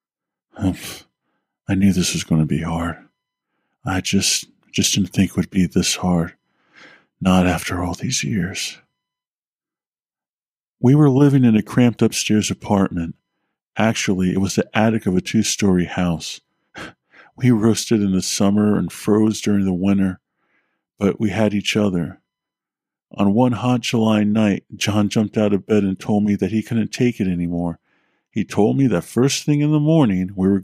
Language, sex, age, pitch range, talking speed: English, male, 50-69, 90-115 Hz, 165 wpm